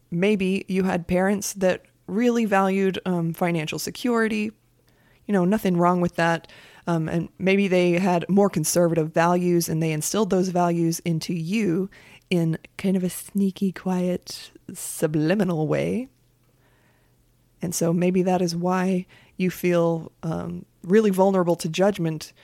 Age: 20-39